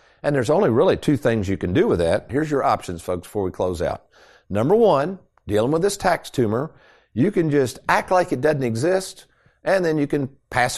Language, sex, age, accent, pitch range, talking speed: English, male, 50-69, American, 110-170 Hz, 215 wpm